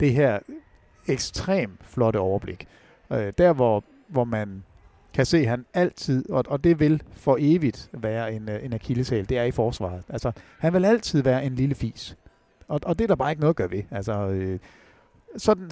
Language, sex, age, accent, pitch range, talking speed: English, male, 60-79, Danish, 115-175 Hz, 190 wpm